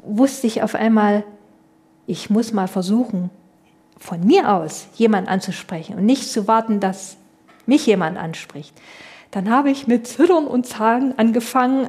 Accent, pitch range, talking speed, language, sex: German, 205-255 Hz, 145 wpm, German, female